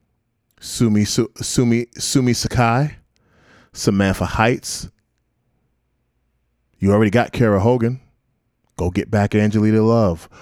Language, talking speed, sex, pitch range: English, 90 wpm, male, 105-130 Hz